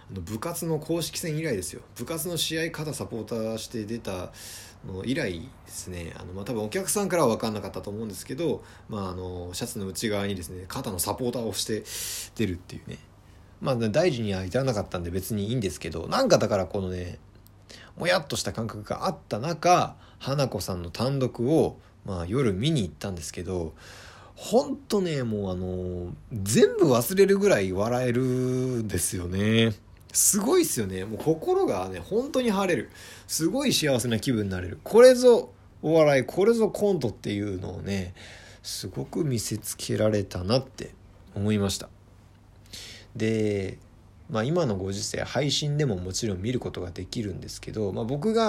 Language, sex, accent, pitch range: Japanese, male, native, 95-130 Hz